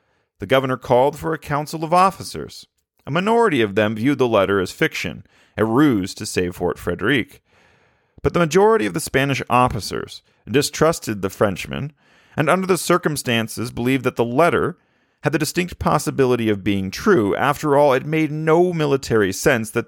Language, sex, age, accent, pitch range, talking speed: English, male, 40-59, American, 115-160 Hz, 170 wpm